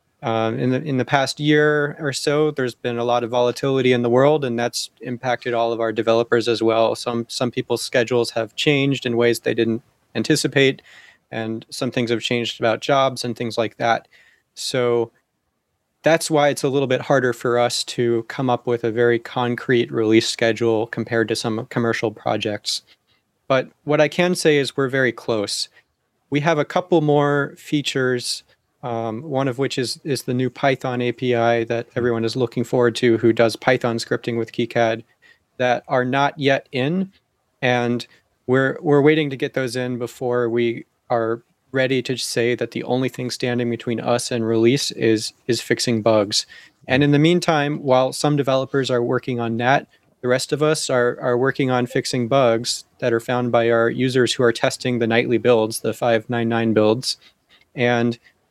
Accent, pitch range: American, 115-135 Hz